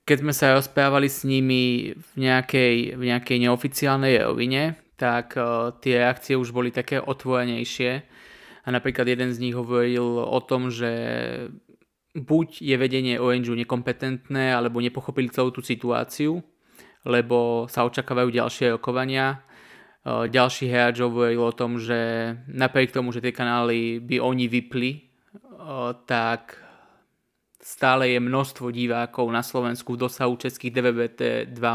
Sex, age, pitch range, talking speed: male, 20-39, 120-130 Hz, 135 wpm